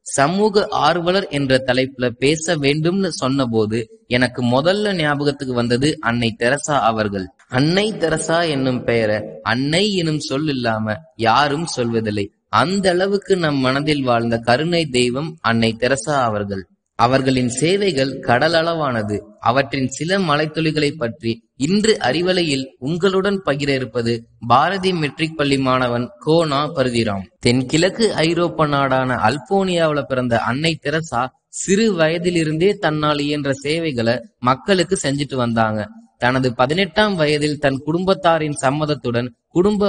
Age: 20-39